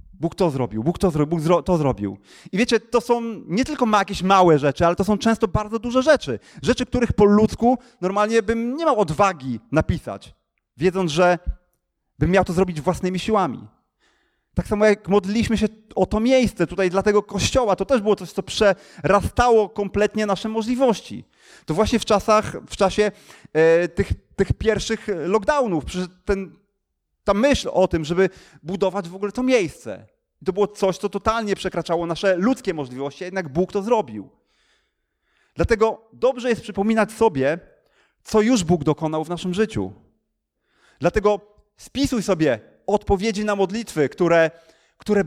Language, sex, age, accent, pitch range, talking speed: Polish, male, 30-49, native, 180-225 Hz, 160 wpm